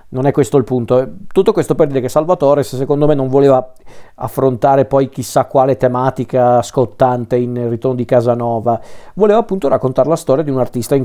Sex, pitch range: male, 125-145 Hz